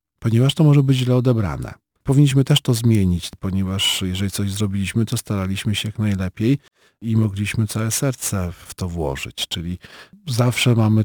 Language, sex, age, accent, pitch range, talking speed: Polish, male, 40-59, native, 95-125 Hz, 160 wpm